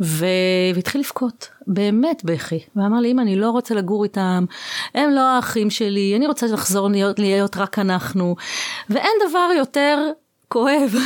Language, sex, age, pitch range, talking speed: Hebrew, female, 30-49, 190-255 Hz, 150 wpm